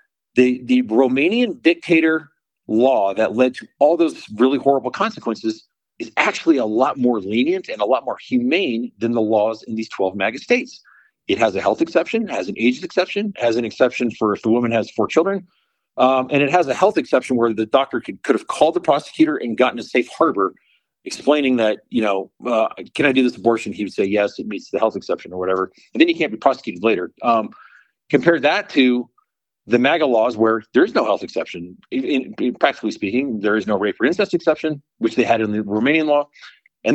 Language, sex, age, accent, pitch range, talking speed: English, male, 50-69, American, 115-175 Hz, 210 wpm